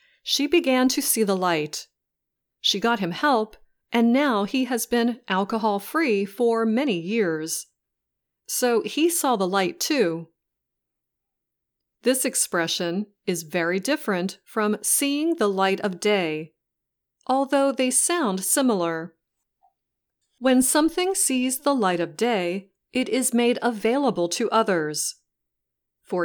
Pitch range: 180-260 Hz